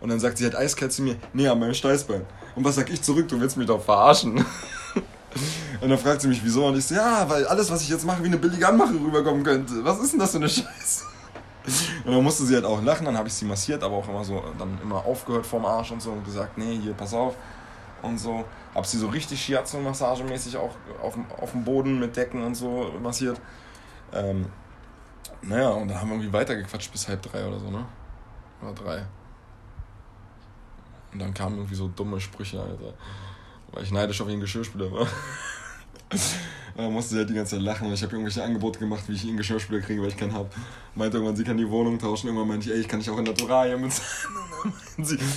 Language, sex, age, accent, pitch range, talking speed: German, male, 20-39, German, 105-130 Hz, 230 wpm